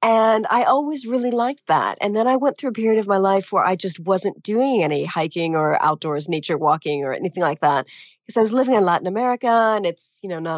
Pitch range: 170-225 Hz